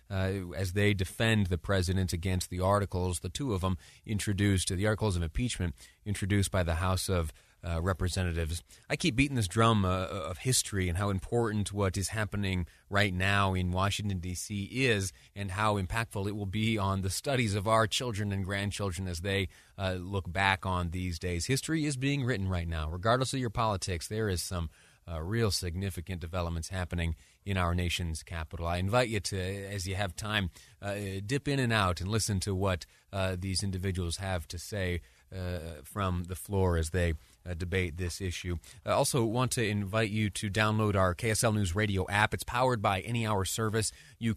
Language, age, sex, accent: English, 30-49, male, American